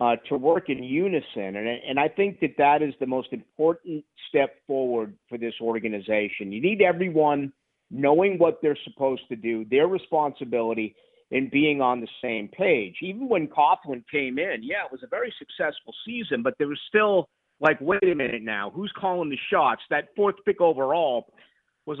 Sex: male